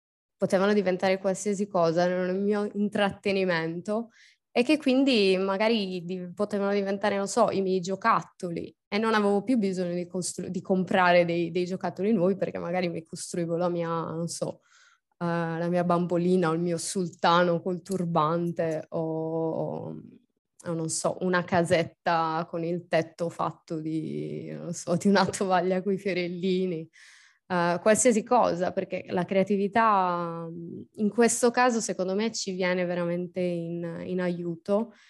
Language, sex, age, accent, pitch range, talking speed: Italian, female, 20-39, native, 170-200 Hz, 145 wpm